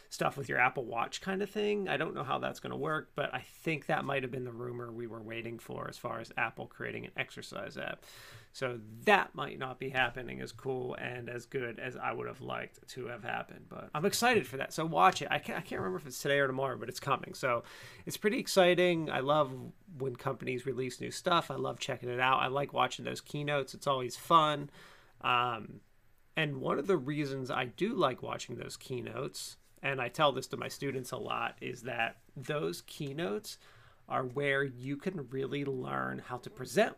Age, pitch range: 30-49, 125-150 Hz